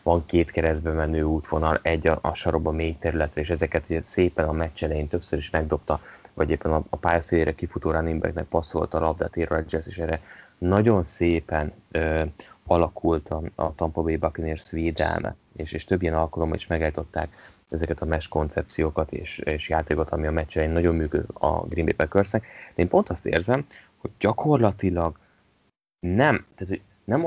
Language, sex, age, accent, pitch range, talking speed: English, male, 30-49, Finnish, 80-95 Hz, 145 wpm